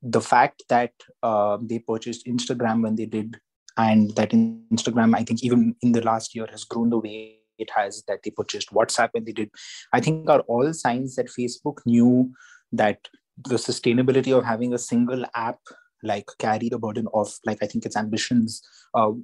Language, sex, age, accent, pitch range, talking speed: English, male, 20-39, Indian, 110-135 Hz, 185 wpm